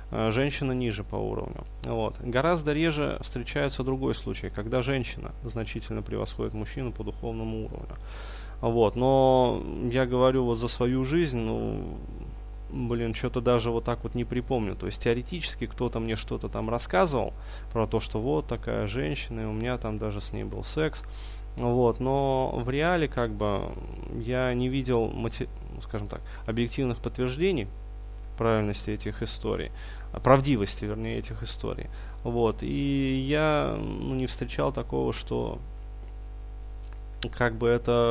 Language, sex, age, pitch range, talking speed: Russian, male, 20-39, 105-125 Hz, 140 wpm